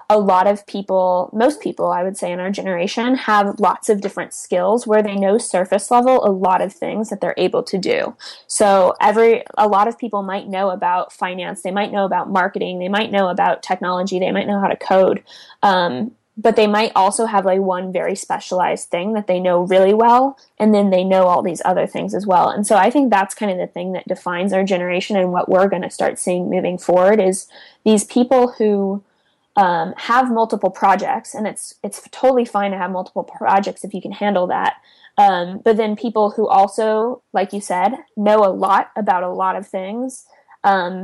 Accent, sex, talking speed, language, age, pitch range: American, female, 210 wpm, English, 10-29, 185-215 Hz